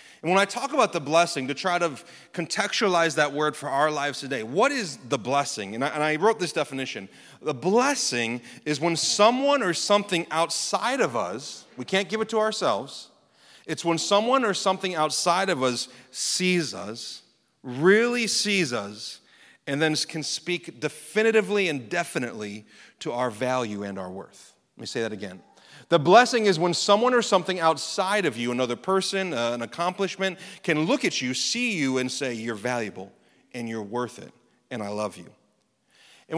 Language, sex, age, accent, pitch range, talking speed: English, male, 30-49, American, 135-190 Hz, 175 wpm